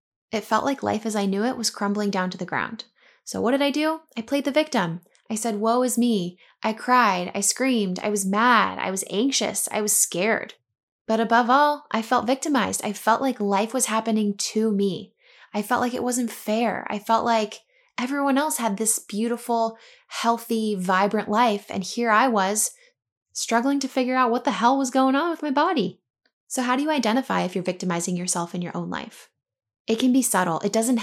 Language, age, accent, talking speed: English, 10-29, American, 210 wpm